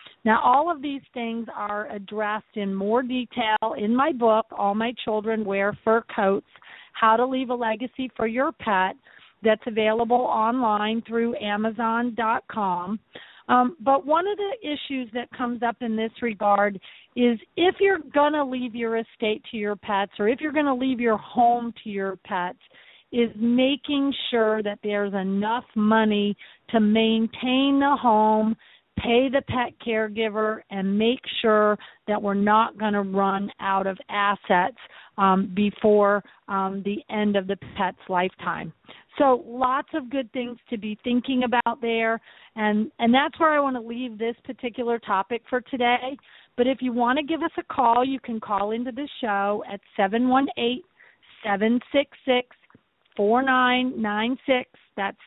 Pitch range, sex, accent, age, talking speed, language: 210-250 Hz, female, American, 40-59, 155 wpm, English